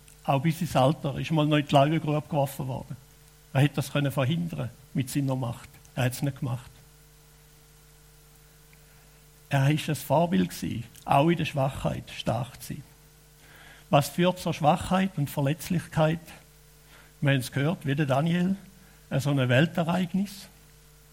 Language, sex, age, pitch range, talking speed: German, male, 60-79, 145-165 Hz, 145 wpm